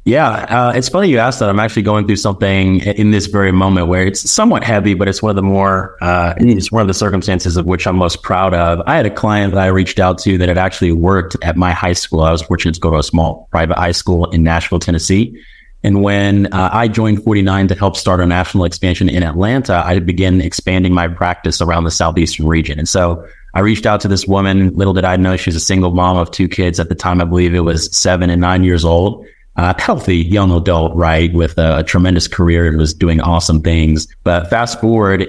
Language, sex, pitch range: English, male, 85-100 Hz